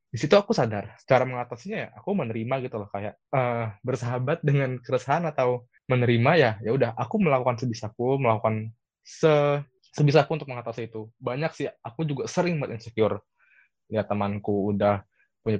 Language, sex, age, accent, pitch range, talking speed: Indonesian, male, 20-39, native, 105-135 Hz, 150 wpm